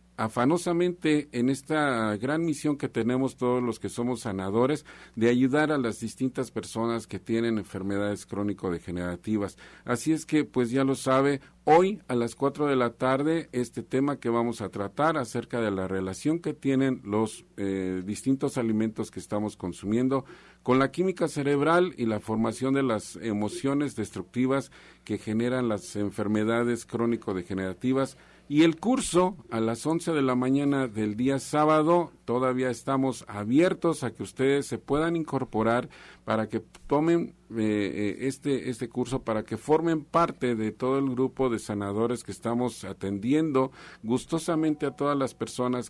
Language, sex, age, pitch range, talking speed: Spanish, male, 50-69, 110-140 Hz, 155 wpm